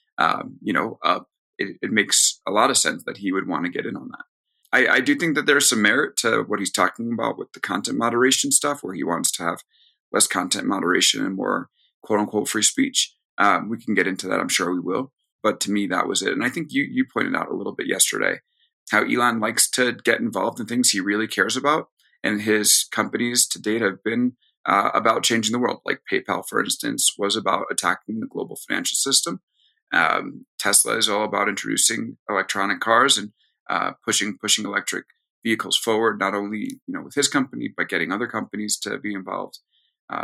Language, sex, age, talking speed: English, male, 30-49, 215 wpm